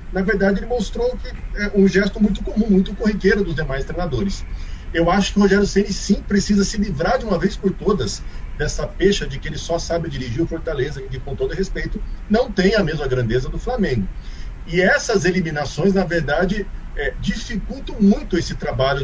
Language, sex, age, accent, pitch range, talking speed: Portuguese, male, 40-59, Brazilian, 125-195 Hz, 195 wpm